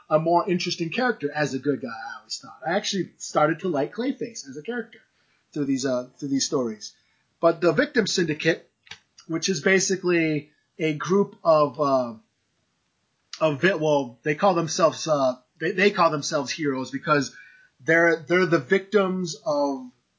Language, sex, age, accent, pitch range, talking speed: English, male, 30-49, American, 140-175 Hz, 160 wpm